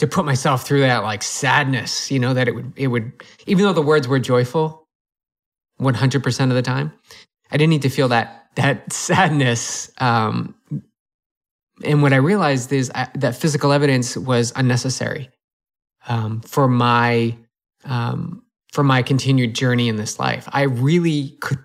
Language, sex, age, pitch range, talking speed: English, male, 20-39, 125-145 Hz, 165 wpm